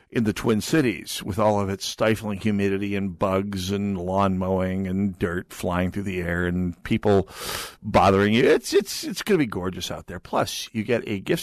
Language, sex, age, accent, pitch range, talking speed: English, male, 50-69, American, 100-130 Hz, 200 wpm